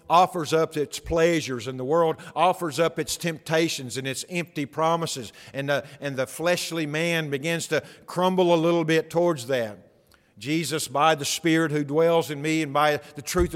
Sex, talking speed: male, 180 wpm